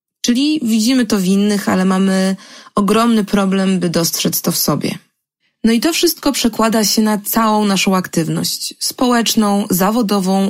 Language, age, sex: Polish, 20-39, female